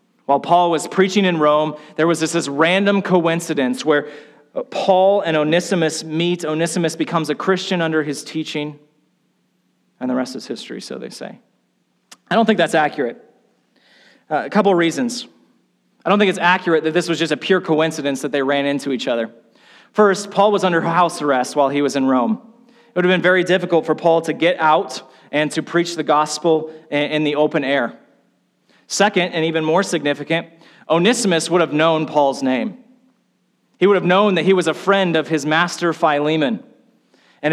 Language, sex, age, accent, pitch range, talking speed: English, male, 30-49, American, 150-190 Hz, 185 wpm